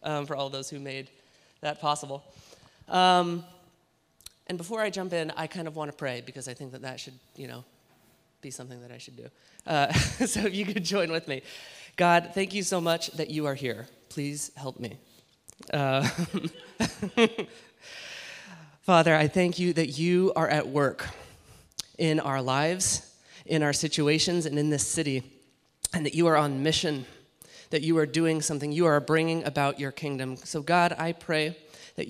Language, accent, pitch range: English, American, 140-165 Hz